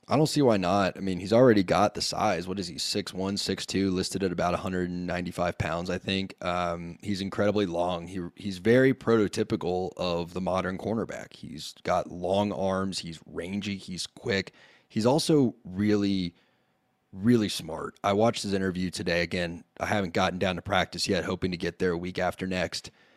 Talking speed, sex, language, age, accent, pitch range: 195 wpm, male, English, 20-39, American, 90-110 Hz